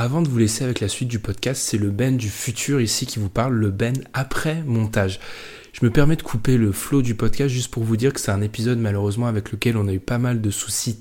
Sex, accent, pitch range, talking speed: male, French, 105-125 Hz, 265 wpm